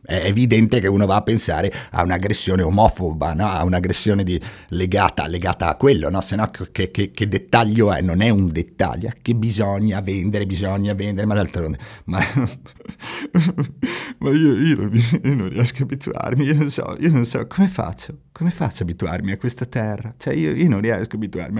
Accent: native